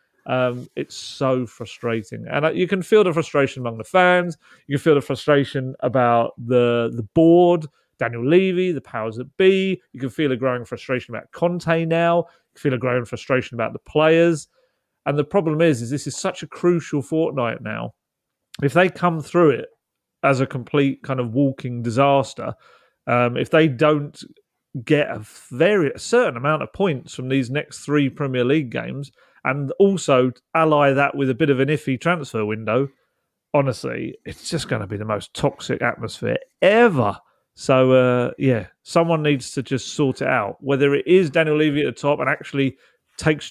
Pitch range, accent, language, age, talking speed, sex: 130-160 Hz, British, English, 30-49, 185 wpm, male